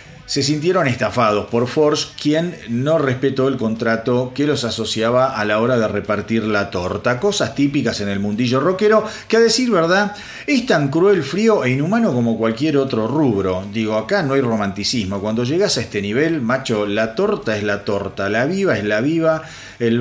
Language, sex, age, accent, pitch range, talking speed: Spanish, male, 40-59, Argentinian, 115-165 Hz, 185 wpm